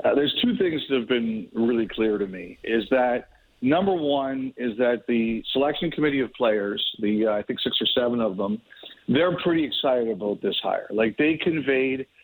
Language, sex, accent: English, male, American